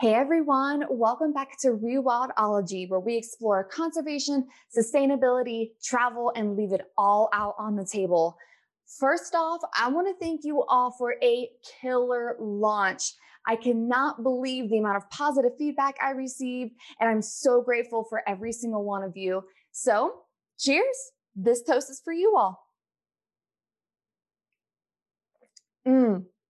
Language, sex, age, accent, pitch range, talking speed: English, female, 20-39, American, 215-275 Hz, 140 wpm